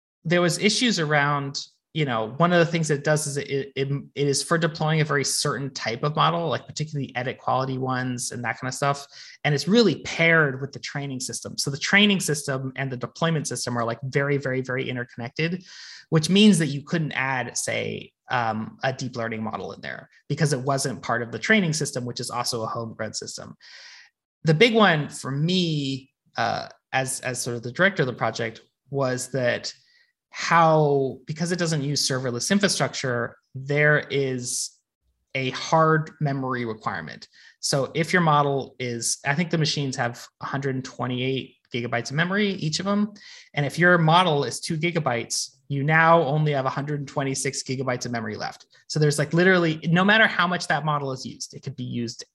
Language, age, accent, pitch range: English, 20-39, American, 125-160 Hz